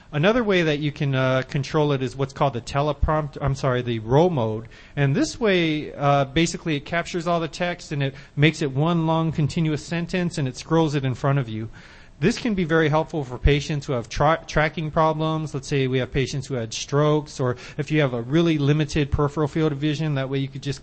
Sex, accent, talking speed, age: male, American, 230 wpm, 30-49